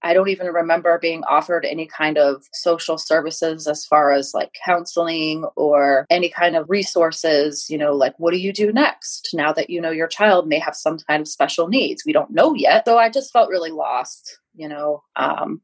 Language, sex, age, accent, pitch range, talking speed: English, female, 20-39, American, 150-190 Hz, 215 wpm